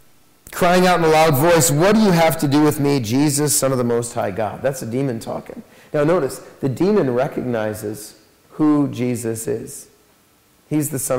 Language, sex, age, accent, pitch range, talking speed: English, male, 40-59, American, 115-160 Hz, 195 wpm